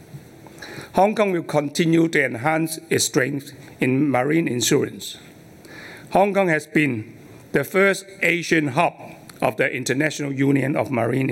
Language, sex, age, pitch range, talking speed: English, male, 60-79, 130-160 Hz, 135 wpm